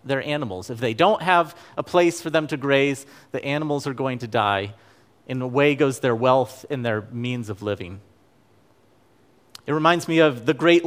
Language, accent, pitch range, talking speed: English, American, 125-175 Hz, 190 wpm